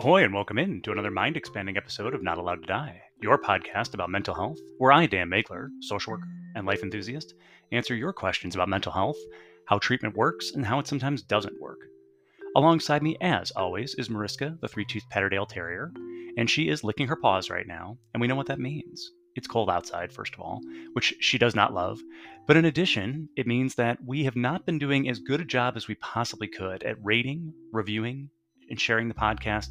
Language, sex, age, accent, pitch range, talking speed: English, male, 30-49, American, 90-135 Hz, 210 wpm